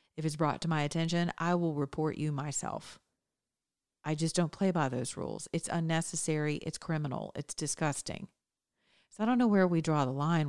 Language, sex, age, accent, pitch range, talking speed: English, female, 40-59, American, 150-175 Hz, 190 wpm